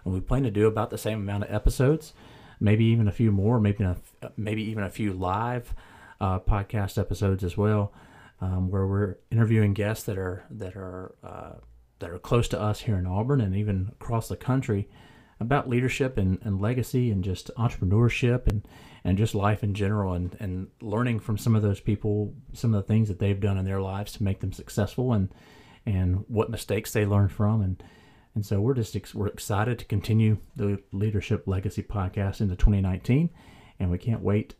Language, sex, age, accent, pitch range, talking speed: English, male, 40-59, American, 95-110 Hz, 195 wpm